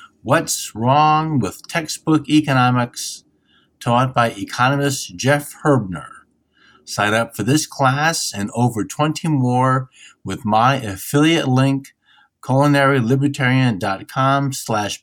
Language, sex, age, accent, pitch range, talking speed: English, male, 50-69, American, 115-150 Hz, 100 wpm